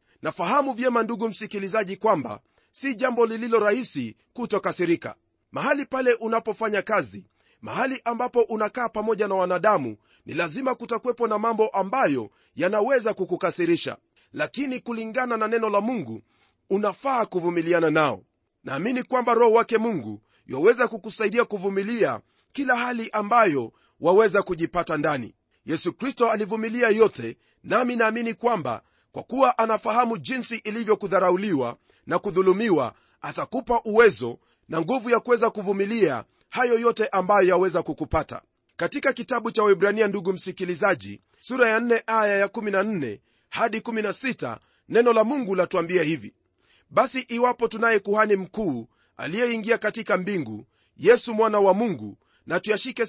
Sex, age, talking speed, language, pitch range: male, 40-59, 125 wpm, Swahili, 185-235 Hz